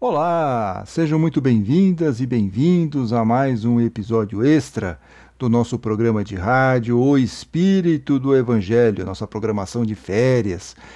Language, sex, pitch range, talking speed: Portuguese, male, 115-160 Hz, 130 wpm